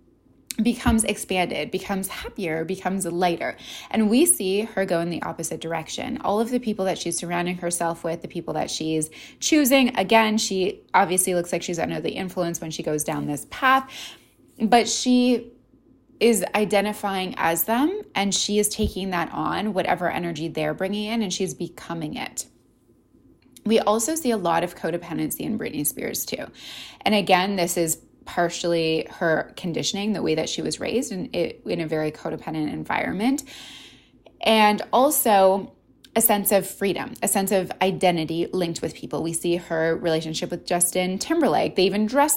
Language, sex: English, female